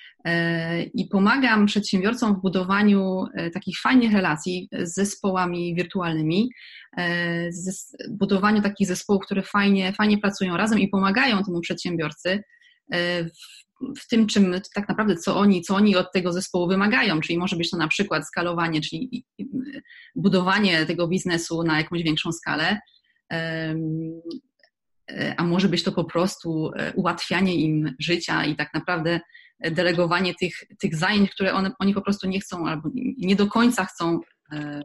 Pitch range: 170-205 Hz